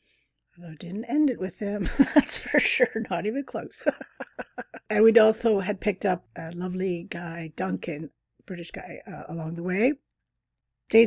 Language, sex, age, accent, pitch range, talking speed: English, female, 40-59, American, 170-225 Hz, 150 wpm